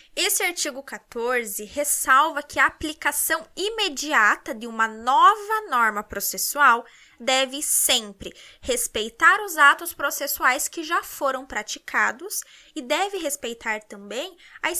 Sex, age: female, 10-29